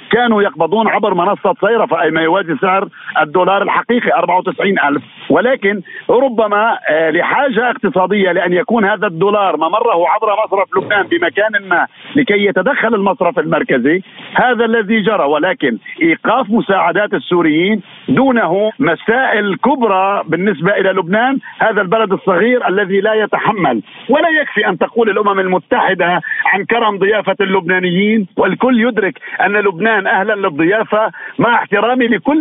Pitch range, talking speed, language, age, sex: 195-240 Hz, 125 wpm, Arabic, 50-69, male